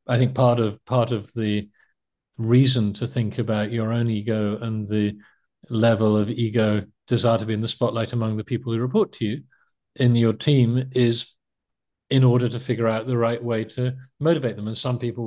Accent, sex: British, male